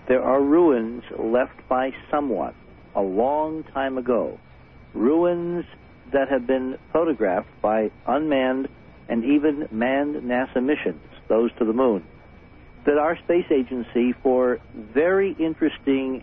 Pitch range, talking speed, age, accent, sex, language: 115-135 Hz, 120 wpm, 60-79, American, male, English